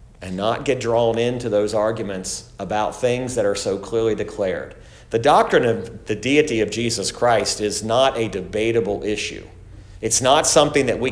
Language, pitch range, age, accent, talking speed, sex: English, 100-125 Hz, 50-69, American, 175 wpm, male